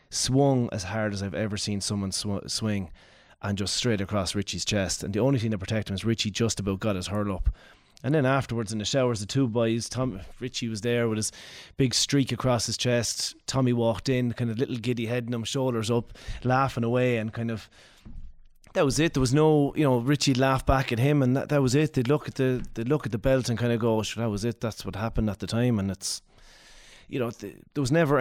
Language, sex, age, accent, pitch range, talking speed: English, male, 30-49, Irish, 105-125 Hz, 240 wpm